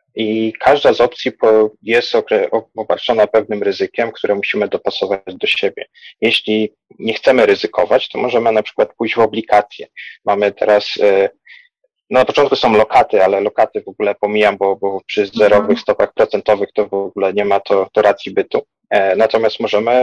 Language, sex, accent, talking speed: Polish, male, native, 165 wpm